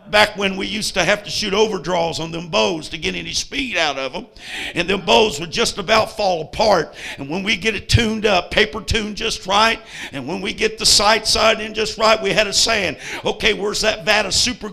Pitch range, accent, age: 205-230 Hz, American, 50-69